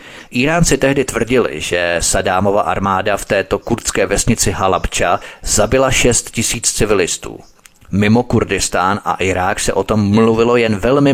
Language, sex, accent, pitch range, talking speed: Czech, male, native, 100-120 Hz, 135 wpm